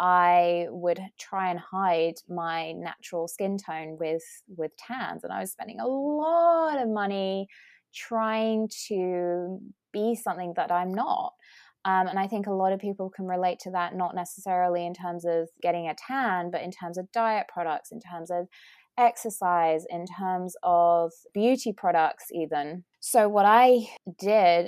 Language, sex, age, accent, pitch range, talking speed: English, female, 20-39, British, 170-225 Hz, 165 wpm